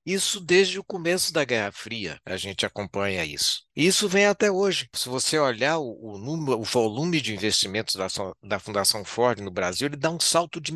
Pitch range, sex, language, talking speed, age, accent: 115-160 Hz, male, Portuguese, 190 wpm, 60-79, Brazilian